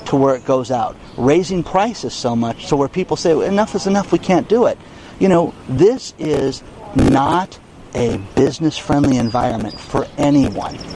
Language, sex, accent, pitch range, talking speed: English, male, American, 130-185 Hz, 170 wpm